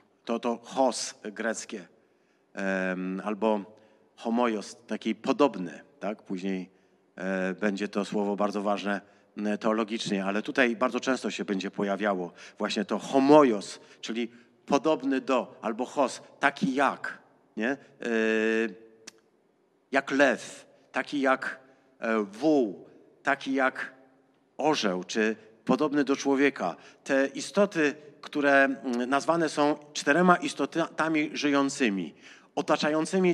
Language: Polish